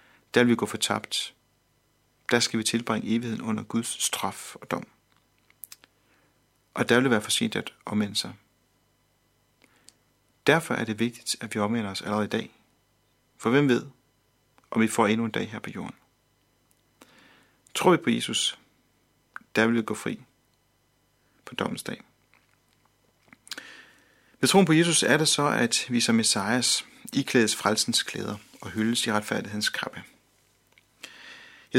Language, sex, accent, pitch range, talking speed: Danish, male, native, 110-130 Hz, 150 wpm